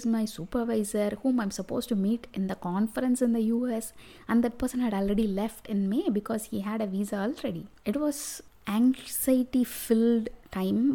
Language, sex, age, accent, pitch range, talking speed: English, female, 20-39, Indian, 200-245 Hz, 175 wpm